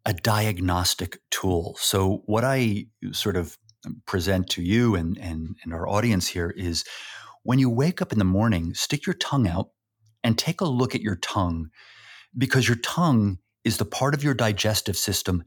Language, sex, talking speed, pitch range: English, male, 180 wpm, 95-125 Hz